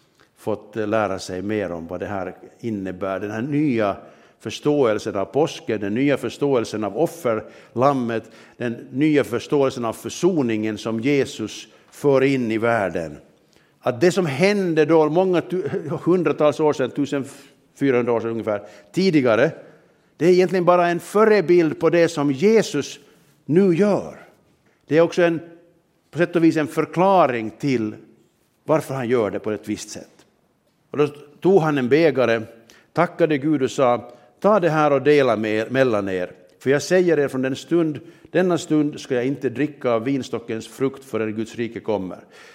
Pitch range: 115-160 Hz